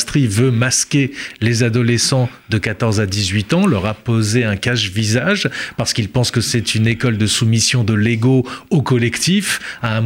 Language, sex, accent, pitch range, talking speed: French, male, French, 115-150 Hz, 180 wpm